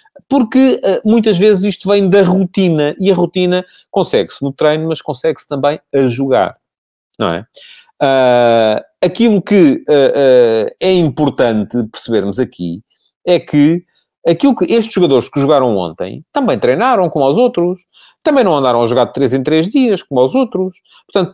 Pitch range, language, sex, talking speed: 125-185 Hz, Portuguese, male, 160 wpm